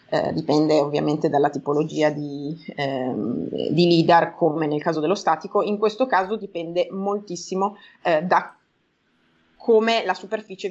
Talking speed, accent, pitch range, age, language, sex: 130 wpm, native, 165-210 Hz, 30-49, Italian, female